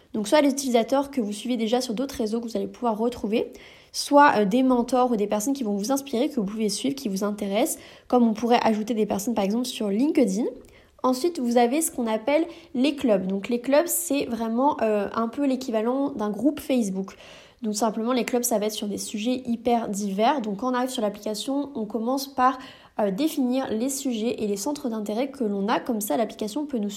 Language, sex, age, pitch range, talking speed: French, female, 20-39, 220-275 Hz, 220 wpm